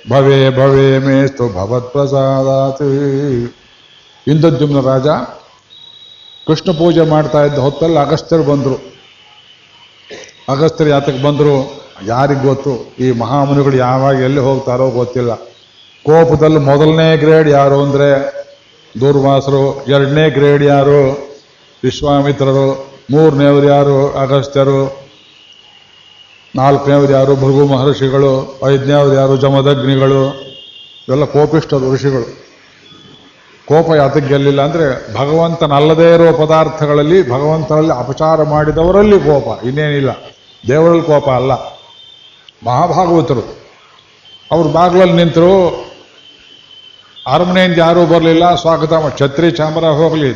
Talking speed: 90 wpm